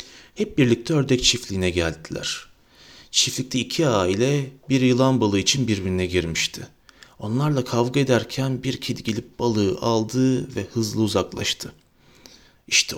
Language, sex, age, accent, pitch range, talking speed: Turkish, male, 40-59, native, 100-145 Hz, 120 wpm